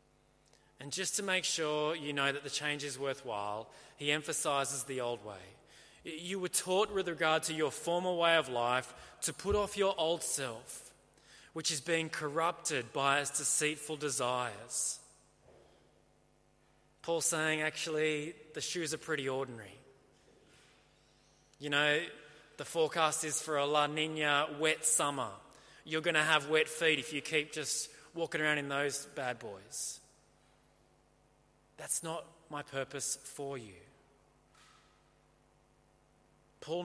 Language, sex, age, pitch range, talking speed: English, male, 20-39, 140-165 Hz, 135 wpm